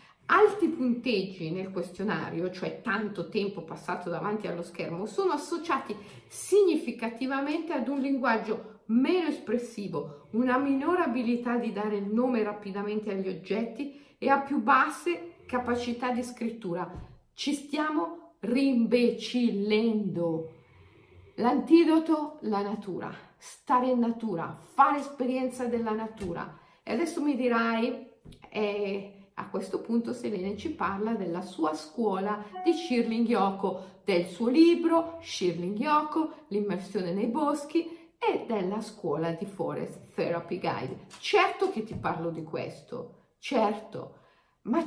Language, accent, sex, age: Italian, native, female, 50-69